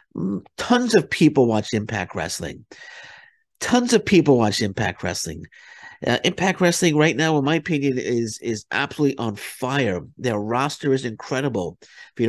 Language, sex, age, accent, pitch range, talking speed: English, male, 50-69, American, 110-150 Hz, 150 wpm